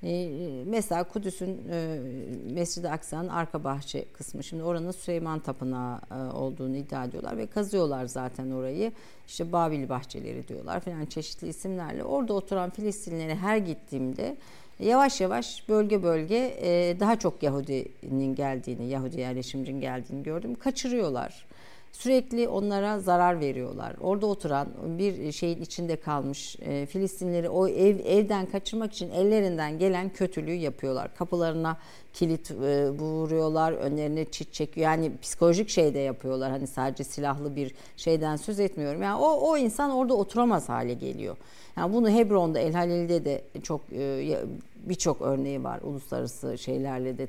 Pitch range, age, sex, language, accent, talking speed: 140-200 Hz, 50-69, female, Turkish, native, 130 wpm